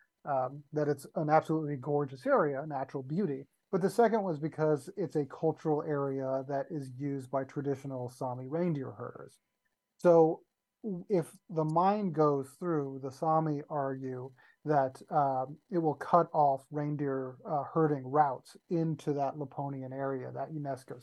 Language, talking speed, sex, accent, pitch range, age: English, 145 wpm, male, American, 135-160 Hz, 30-49